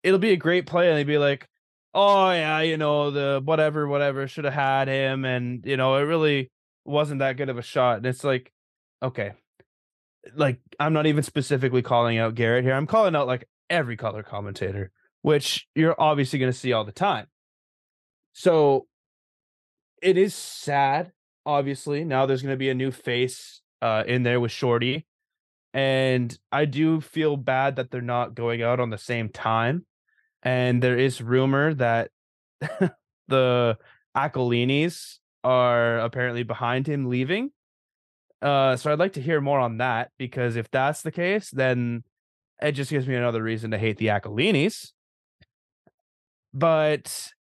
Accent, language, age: American, English, 20-39